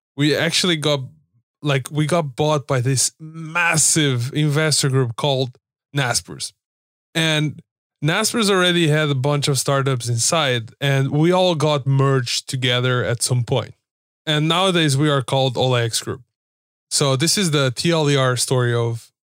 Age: 20-39